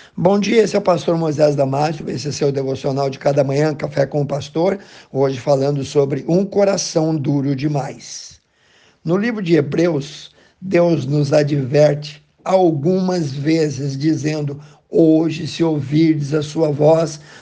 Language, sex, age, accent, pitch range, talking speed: Portuguese, male, 60-79, Brazilian, 150-180 Hz, 150 wpm